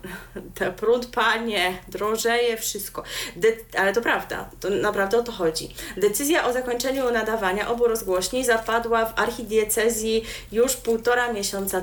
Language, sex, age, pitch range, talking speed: Polish, female, 30-49, 210-245 Hz, 125 wpm